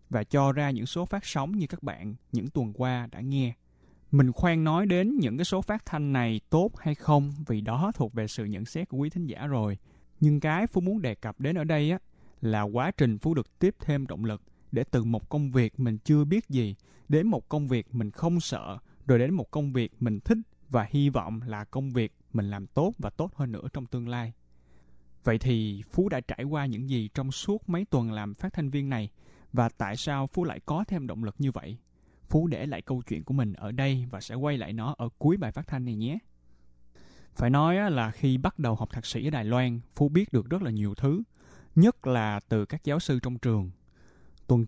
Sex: male